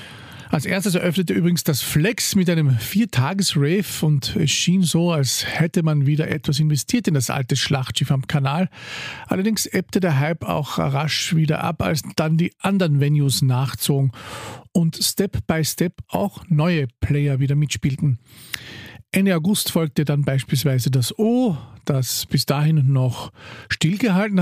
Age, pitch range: 50-69, 135-180 Hz